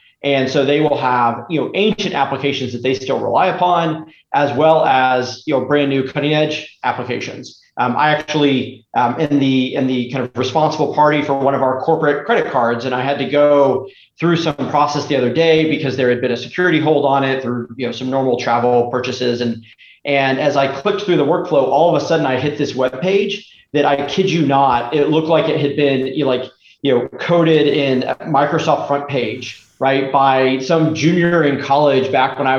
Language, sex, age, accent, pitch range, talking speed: English, male, 40-59, American, 130-170 Hz, 215 wpm